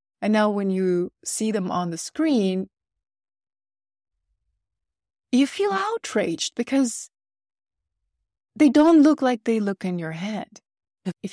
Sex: female